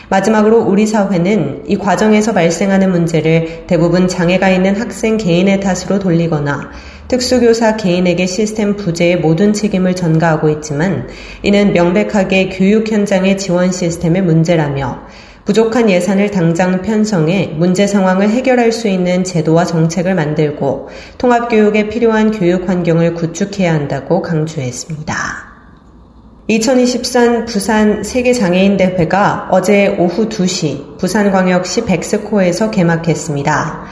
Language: Korean